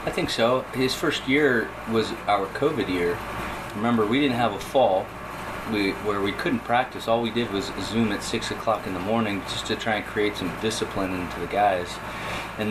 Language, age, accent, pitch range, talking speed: English, 30-49, American, 100-120 Hz, 200 wpm